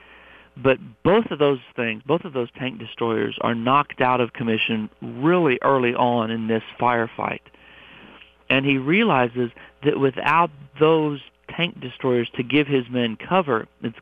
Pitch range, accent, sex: 115-140 Hz, American, male